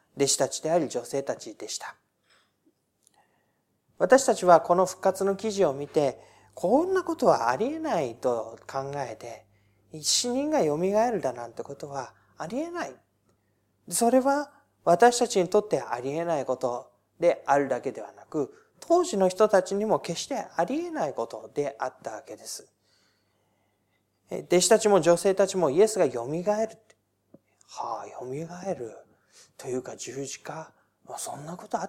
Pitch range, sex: 130-210 Hz, male